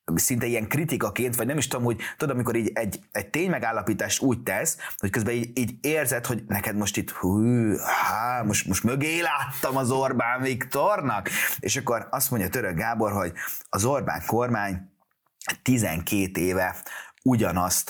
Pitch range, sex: 100-140 Hz, male